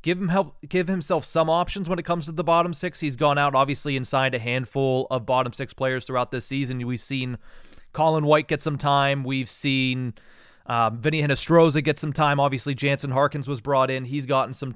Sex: male